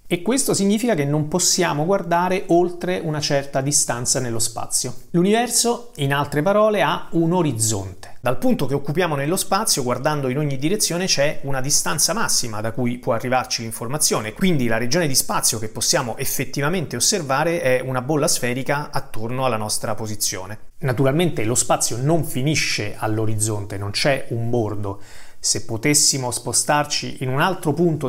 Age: 30-49